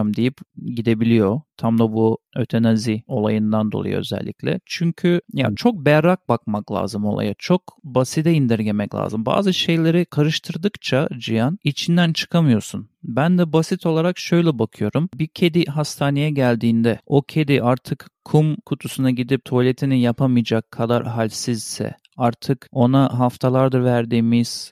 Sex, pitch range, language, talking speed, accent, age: male, 120-150 Hz, Turkish, 120 wpm, native, 40-59